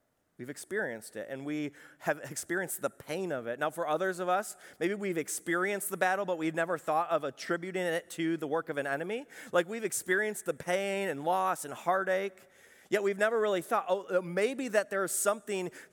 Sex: male